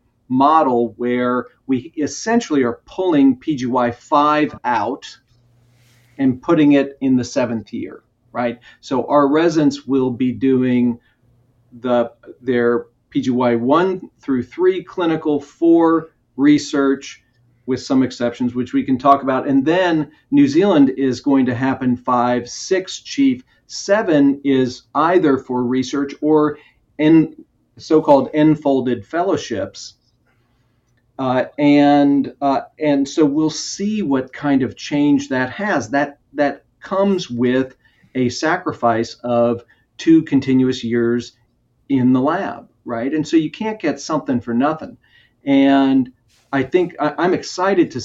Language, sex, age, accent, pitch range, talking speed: English, male, 40-59, American, 120-150 Hz, 125 wpm